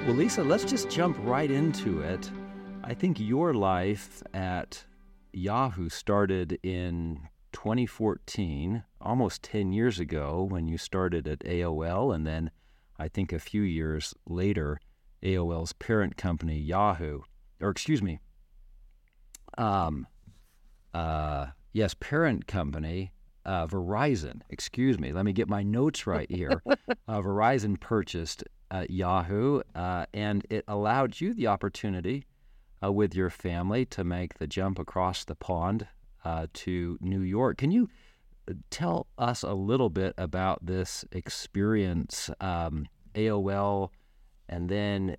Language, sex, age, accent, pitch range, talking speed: English, male, 40-59, American, 85-105 Hz, 130 wpm